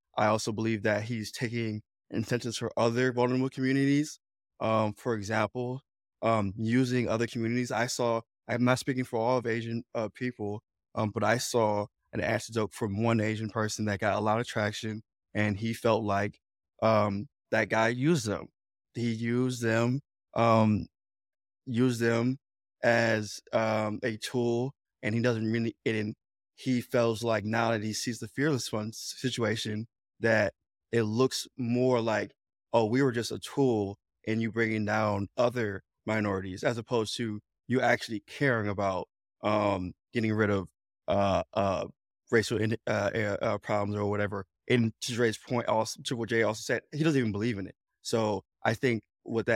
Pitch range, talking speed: 105-120 Hz, 165 wpm